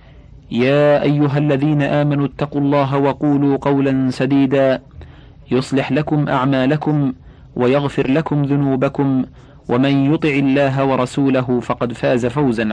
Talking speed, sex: 105 wpm, male